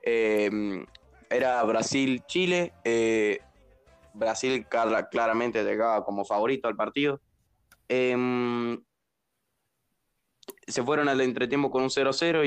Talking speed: 95 wpm